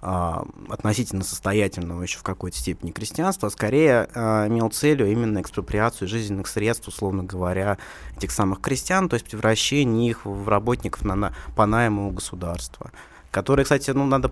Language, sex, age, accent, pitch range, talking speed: Russian, male, 20-39, native, 100-140 Hz, 145 wpm